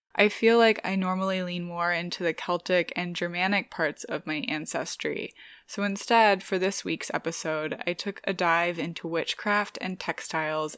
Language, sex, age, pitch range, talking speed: English, female, 20-39, 165-200 Hz, 165 wpm